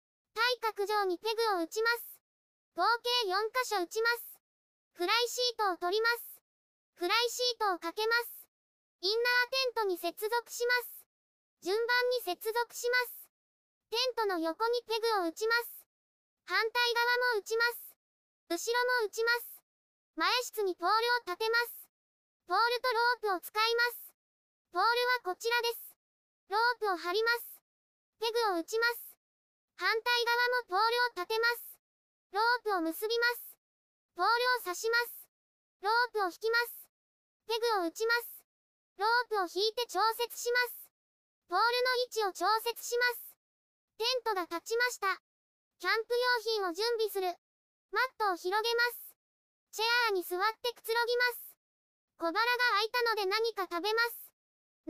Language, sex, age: Japanese, male, 20-39